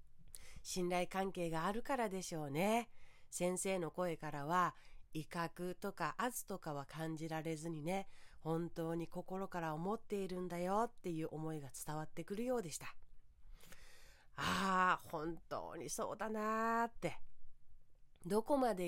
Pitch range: 160-190 Hz